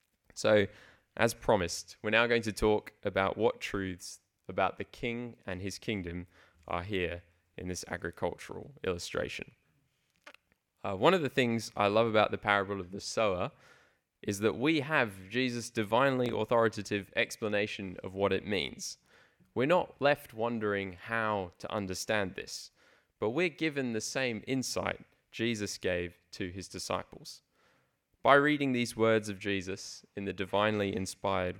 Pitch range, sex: 95-120 Hz, male